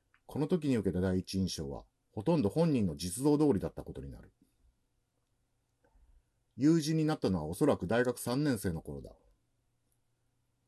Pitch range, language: 95-135 Hz, Japanese